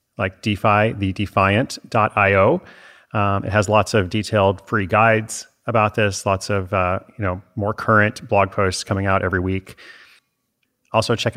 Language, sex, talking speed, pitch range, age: English, male, 155 wpm, 95-115 Hz, 30-49